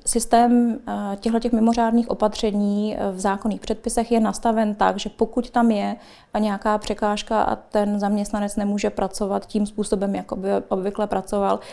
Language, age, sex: Czech, 20-39, female